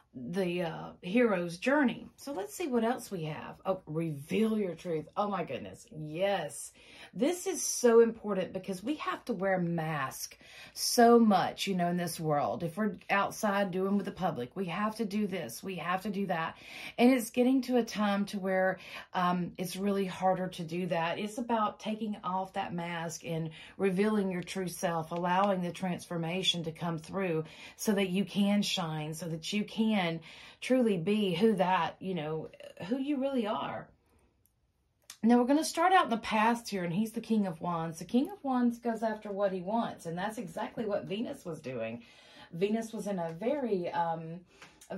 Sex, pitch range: female, 180-225 Hz